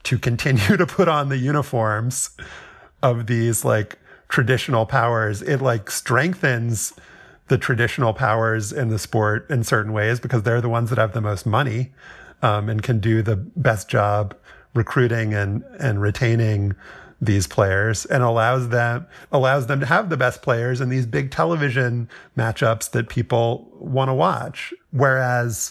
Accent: American